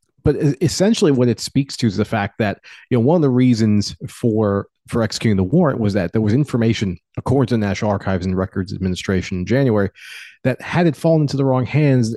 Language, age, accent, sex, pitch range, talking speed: English, 30-49, American, male, 100-125 Hz, 215 wpm